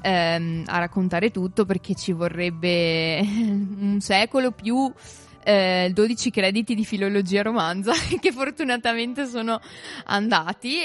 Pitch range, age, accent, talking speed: 175-200 Hz, 20-39, native, 105 wpm